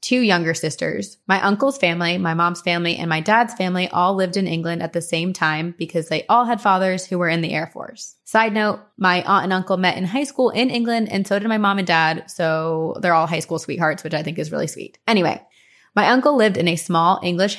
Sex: female